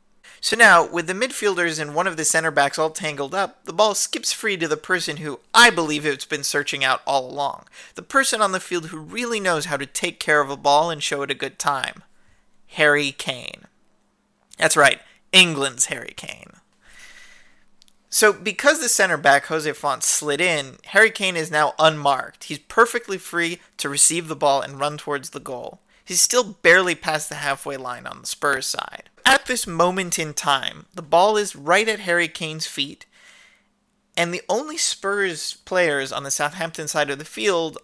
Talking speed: 190 wpm